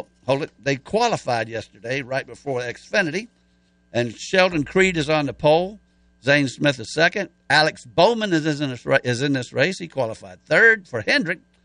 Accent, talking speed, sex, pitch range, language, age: American, 175 wpm, male, 100-160 Hz, English, 60-79